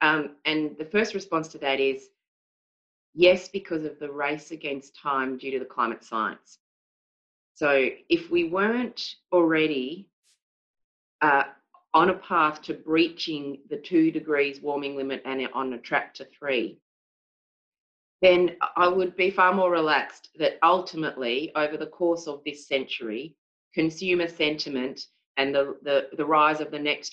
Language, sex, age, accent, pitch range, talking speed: English, female, 30-49, Australian, 135-170 Hz, 150 wpm